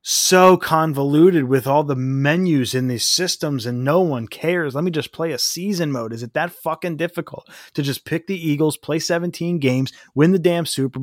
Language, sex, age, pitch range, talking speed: English, male, 30-49, 120-160 Hz, 200 wpm